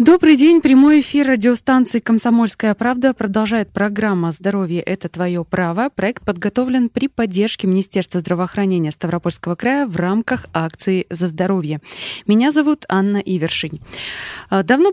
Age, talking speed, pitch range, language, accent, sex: 20-39, 130 wpm, 180-245 Hz, Russian, native, female